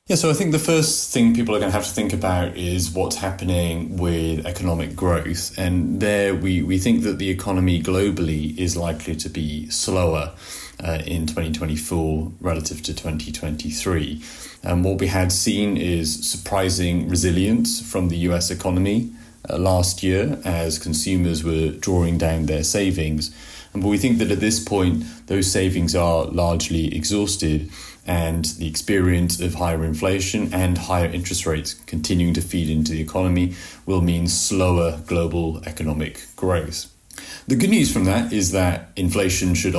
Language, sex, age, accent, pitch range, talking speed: English, male, 30-49, British, 80-95 Hz, 160 wpm